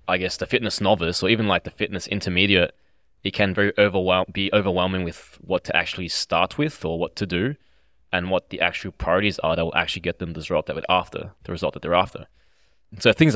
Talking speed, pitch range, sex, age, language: 225 wpm, 85-105 Hz, male, 20-39, English